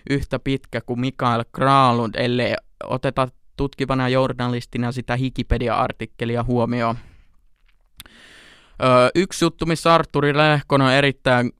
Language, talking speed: Finnish, 100 wpm